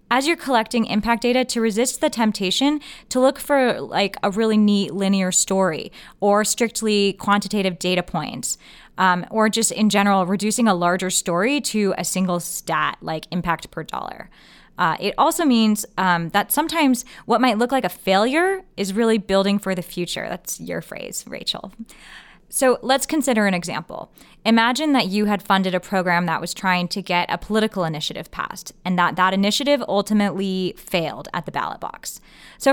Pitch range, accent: 185-230 Hz, American